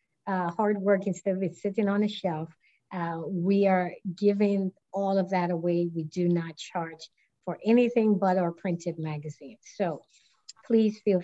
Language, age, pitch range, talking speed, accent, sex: Russian, 50-69, 185-230 Hz, 165 wpm, American, female